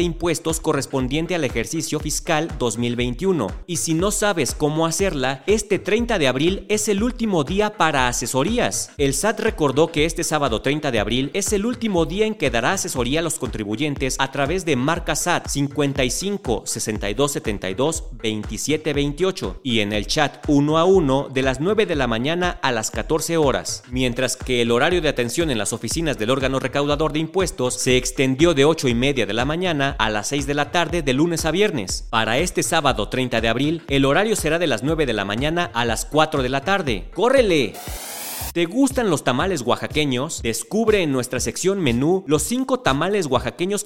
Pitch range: 130-185 Hz